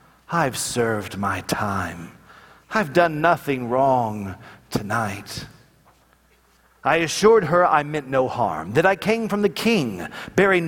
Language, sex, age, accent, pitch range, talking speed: English, male, 40-59, American, 110-160 Hz, 130 wpm